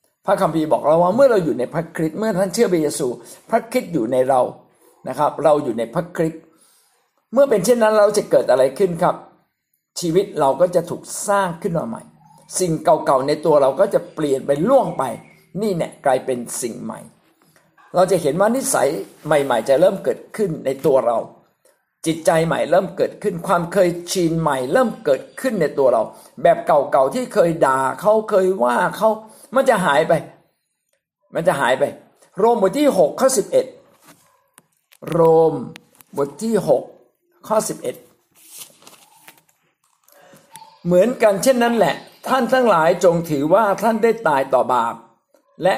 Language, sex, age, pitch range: Thai, male, 60-79, 165-235 Hz